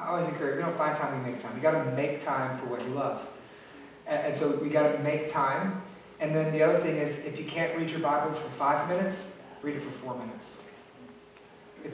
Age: 30-49